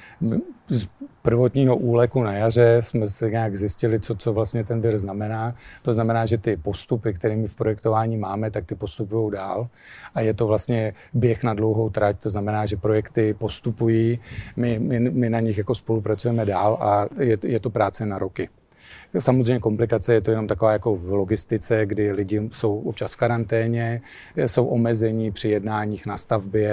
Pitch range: 105-120 Hz